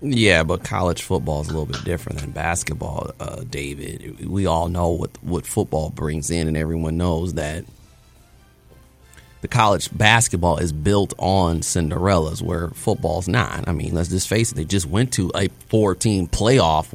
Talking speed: 170 wpm